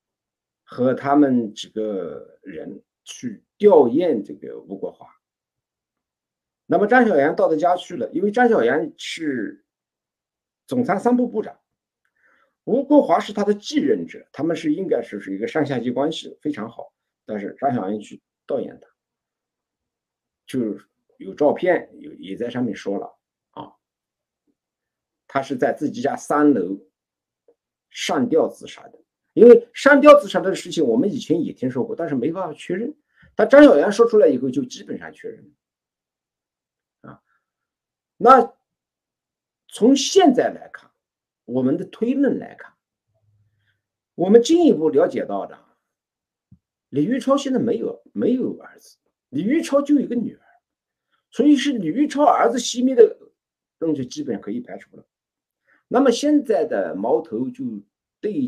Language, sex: Chinese, male